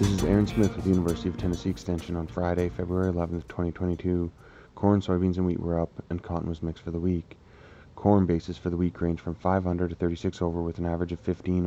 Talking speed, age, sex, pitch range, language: 225 wpm, 20-39, male, 85-95 Hz, English